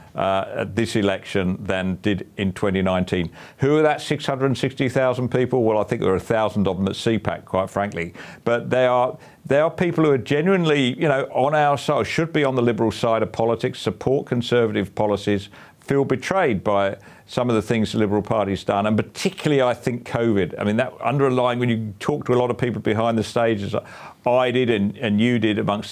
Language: English